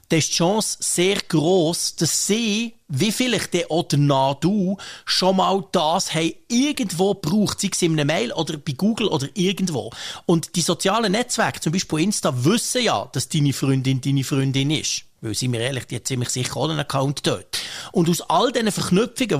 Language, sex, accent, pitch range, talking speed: German, male, Austrian, 150-195 Hz, 190 wpm